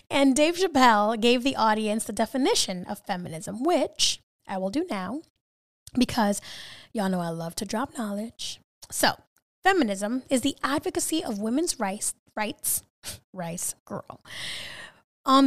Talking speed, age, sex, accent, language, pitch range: 135 wpm, 10-29, female, American, English, 205-295 Hz